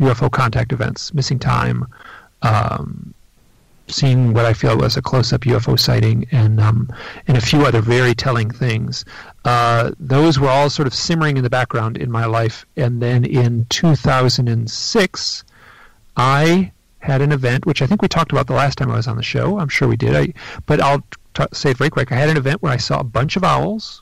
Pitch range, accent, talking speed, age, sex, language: 120-150 Hz, American, 205 wpm, 40-59, male, English